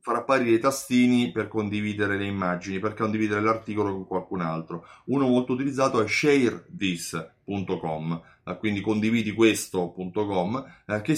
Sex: male